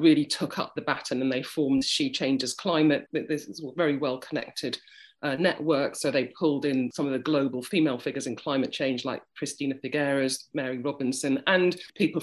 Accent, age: British, 40-59